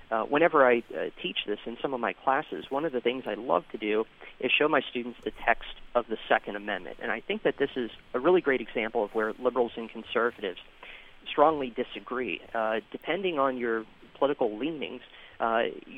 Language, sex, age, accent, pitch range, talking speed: English, male, 40-59, American, 115-130 Hz, 200 wpm